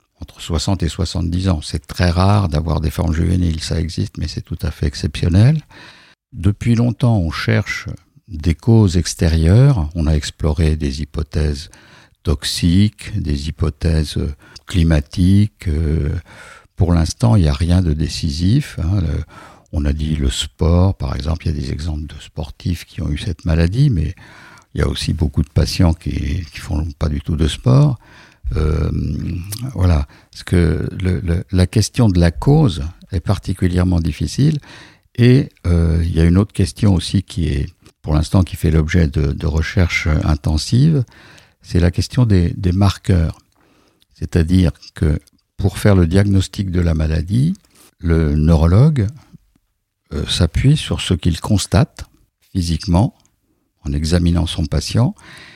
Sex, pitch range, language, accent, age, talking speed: male, 80-100 Hz, French, French, 60-79, 155 wpm